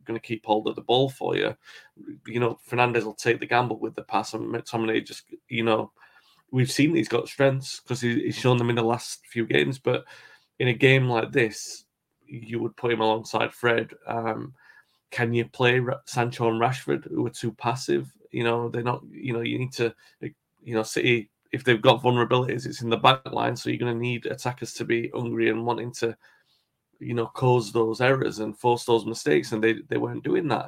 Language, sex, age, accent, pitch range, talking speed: English, male, 30-49, British, 115-135 Hz, 215 wpm